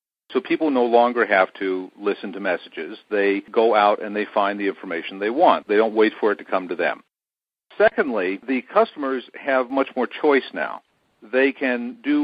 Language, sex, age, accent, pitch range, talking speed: English, male, 50-69, American, 105-135 Hz, 190 wpm